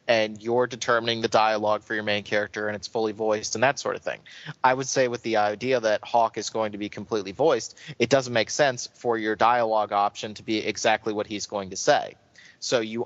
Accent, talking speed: American, 230 wpm